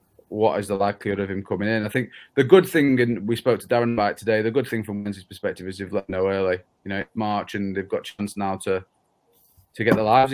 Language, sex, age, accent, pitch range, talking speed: English, male, 30-49, British, 100-115 Hz, 260 wpm